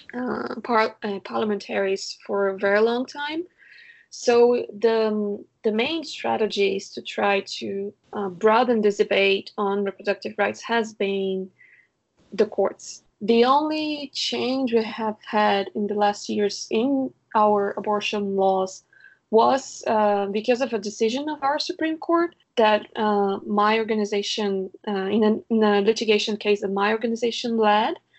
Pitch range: 200-235 Hz